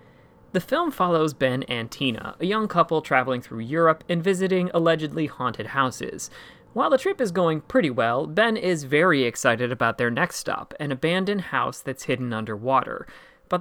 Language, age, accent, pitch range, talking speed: English, 30-49, American, 130-170 Hz, 170 wpm